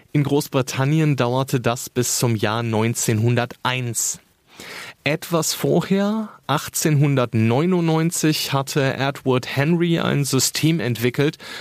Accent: German